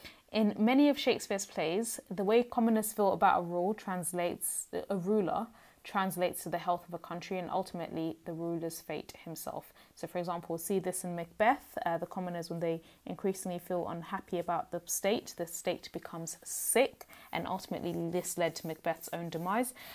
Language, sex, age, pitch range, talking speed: English, female, 20-39, 175-215 Hz, 175 wpm